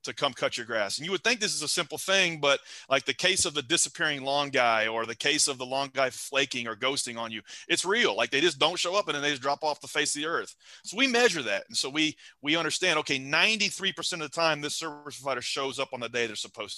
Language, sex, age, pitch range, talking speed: English, male, 30-49, 130-160 Hz, 280 wpm